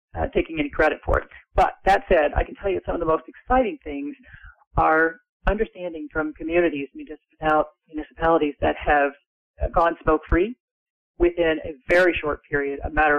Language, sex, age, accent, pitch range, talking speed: English, male, 40-59, American, 150-190 Hz, 160 wpm